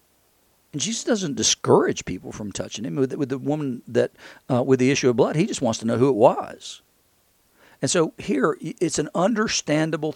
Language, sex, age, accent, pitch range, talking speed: English, male, 50-69, American, 130-175 Hz, 190 wpm